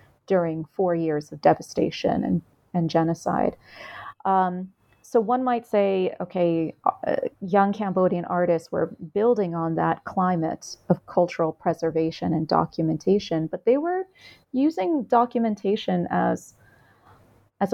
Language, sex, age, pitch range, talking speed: English, female, 30-49, 165-200 Hz, 120 wpm